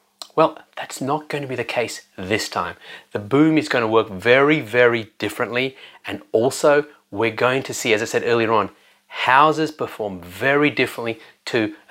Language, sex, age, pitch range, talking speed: English, male, 30-49, 110-145 Hz, 165 wpm